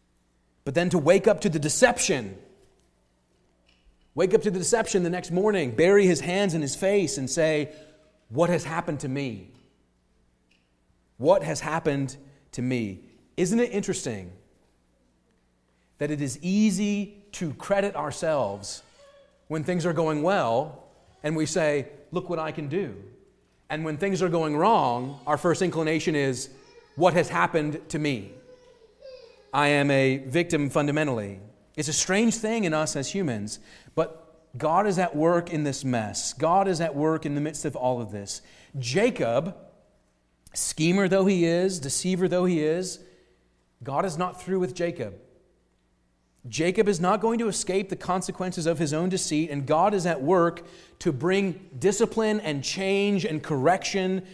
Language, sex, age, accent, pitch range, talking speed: English, male, 30-49, American, 130-185 Hz, 160 wpm